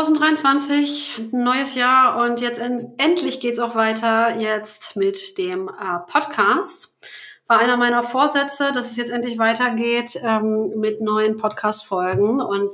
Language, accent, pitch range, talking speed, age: German, German, 210-255 Hz, 135 wpm, 30-49